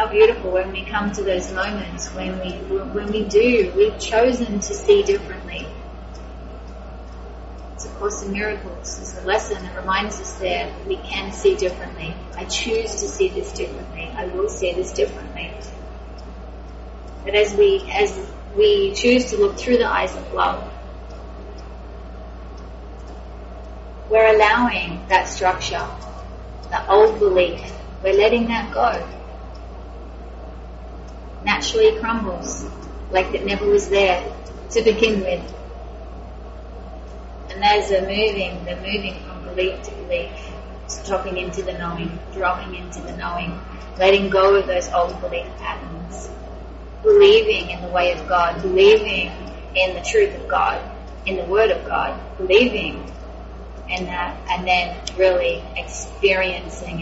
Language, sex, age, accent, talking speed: English, female, 30-49, Australian, 140 wpm